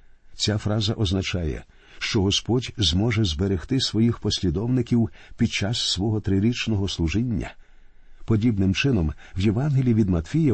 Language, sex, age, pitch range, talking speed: Ukrainian, male, 50-69, 95-125 Hz, 115 wpm